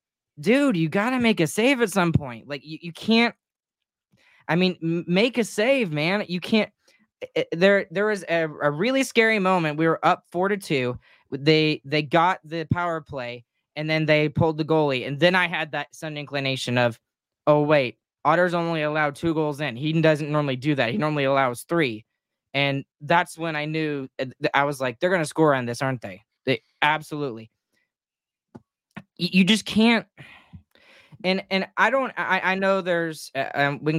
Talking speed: 180 wpm